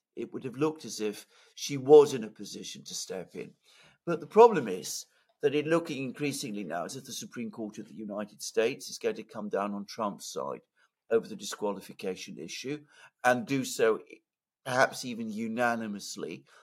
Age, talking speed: 50-69, 180 wpm